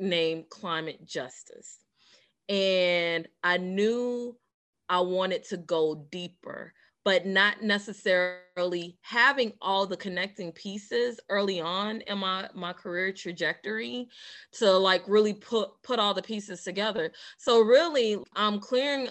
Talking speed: 120 wpm